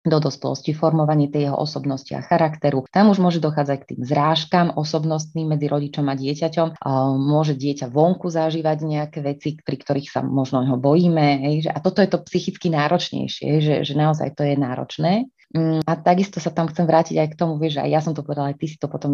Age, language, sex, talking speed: 20-39, Slovak, female, 205 wpm